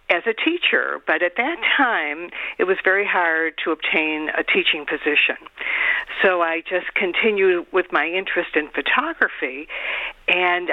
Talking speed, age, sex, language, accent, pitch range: 145 wpm, 50-69, female, English, American, 165-220 Hz